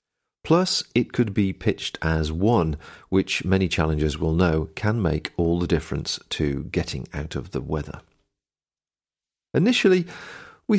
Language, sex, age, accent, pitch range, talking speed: English, male, 40-59, British, 85-130 Hz, 140 wpm